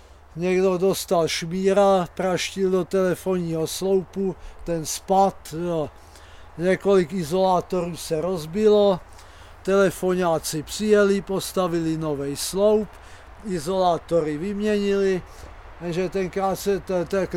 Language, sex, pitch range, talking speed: Czech, male, 165-205 Hz, 95 wpm